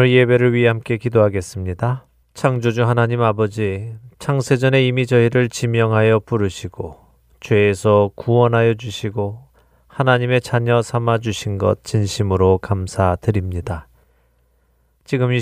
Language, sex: Korean, male